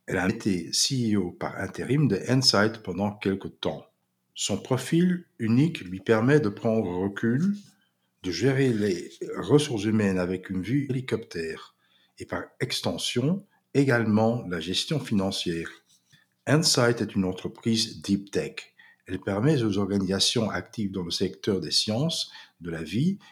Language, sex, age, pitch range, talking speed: Dutch, male, 50-69, 95-135 Hz, 140 wpm